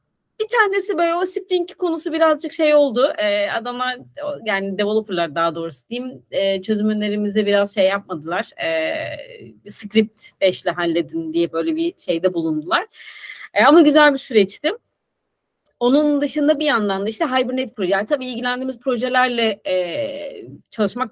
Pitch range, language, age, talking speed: 205-290 Hz, Turkish, 30-49, 145 wpm